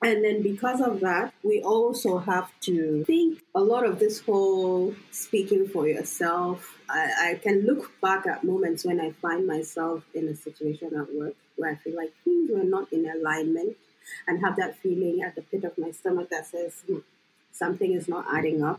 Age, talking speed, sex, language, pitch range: 30-49, 195 wpm, female, English, 160-200 Hz